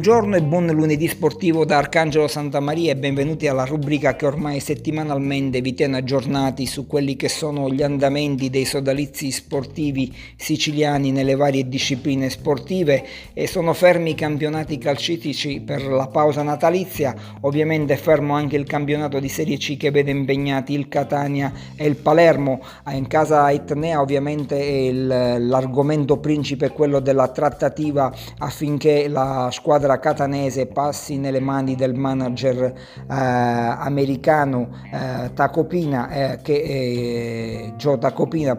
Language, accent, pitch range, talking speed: Italian, native, 130-150 Hz, 135 wpm